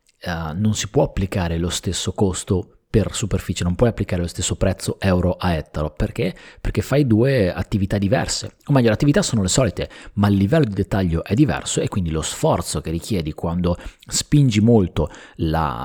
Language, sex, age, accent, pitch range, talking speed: Italian, male, 30-49, native, 85-110 Hz, 185 wpm